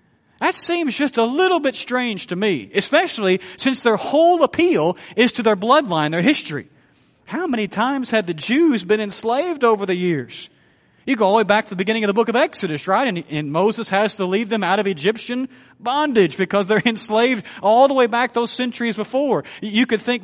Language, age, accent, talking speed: English, 40-59, American, 210 wpm